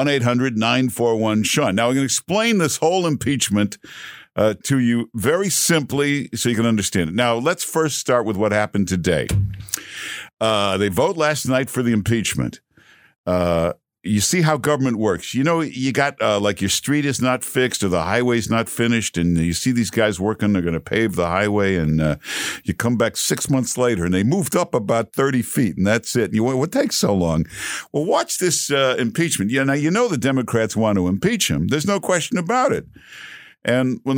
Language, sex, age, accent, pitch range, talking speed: English, male, 60-79, American, 100-140 Hz, 205 wpm